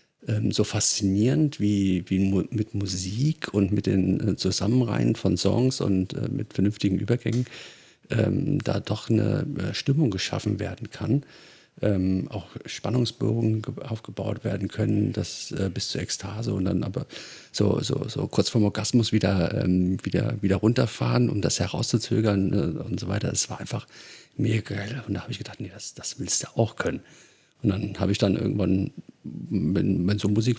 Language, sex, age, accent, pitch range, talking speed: German, male, 40-59, German, 100-130 Hz, 160 wpm